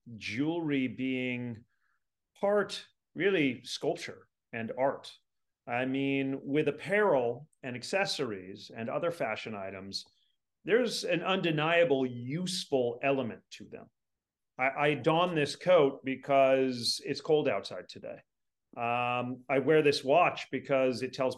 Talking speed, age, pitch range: 120 wpm, 40-59, 125-165 Hz